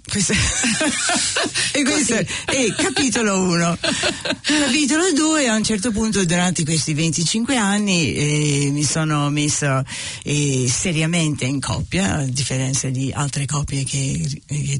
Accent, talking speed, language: native, 120 wpm, Italian